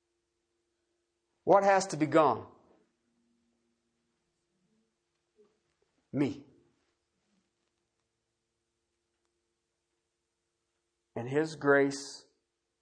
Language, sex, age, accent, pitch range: English, male, 50-69, American, 115-170 Hz